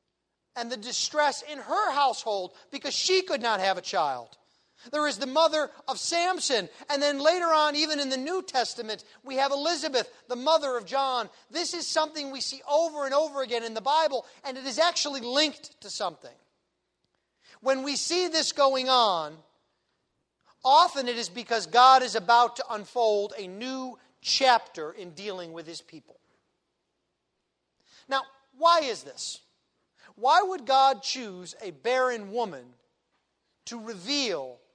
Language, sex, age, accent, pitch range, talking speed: English, male, 40-59, American, 225-300 Hz, 155 wpm